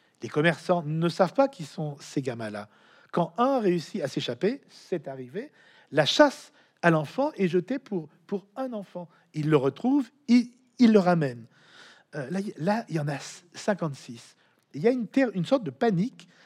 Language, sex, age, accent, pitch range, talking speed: French, male, 50-69, French, 145-190 Hz, 185 wpm